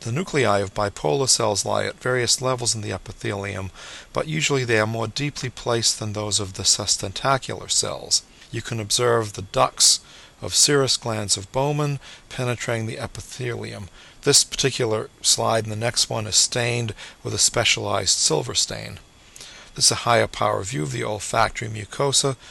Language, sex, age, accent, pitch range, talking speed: English, male, 40-59, American, 110-135 Hz, 165 wpm